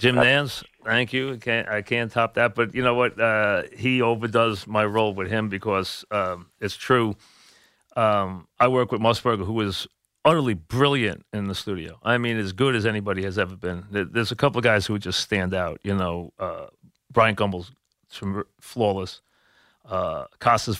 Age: 40-59